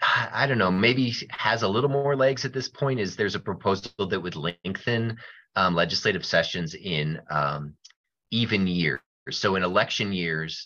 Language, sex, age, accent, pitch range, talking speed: English, male, 30-49, American, 75-110 Hz, 170 wpm